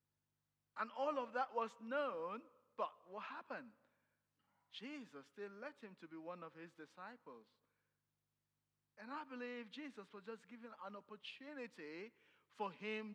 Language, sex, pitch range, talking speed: English, male, 175-245 Hz, 135 wpm